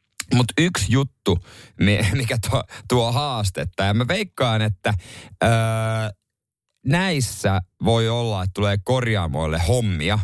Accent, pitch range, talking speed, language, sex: native, 95-120 Hz, 110 wpm, Finnish, male